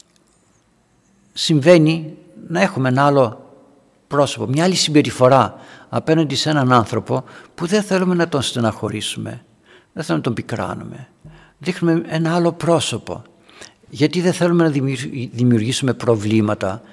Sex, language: male, Greek